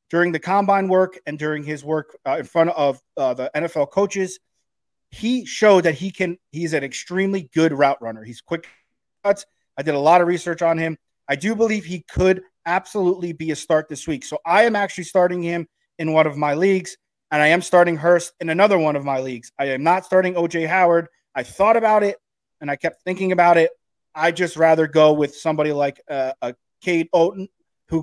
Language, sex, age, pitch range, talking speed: English, male, 30-49, 155-190 Hz, 210 wpm